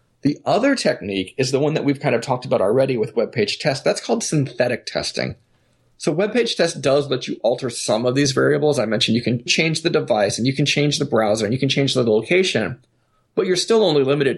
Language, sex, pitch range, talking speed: English, male, 110-145 Hz, 220 wpm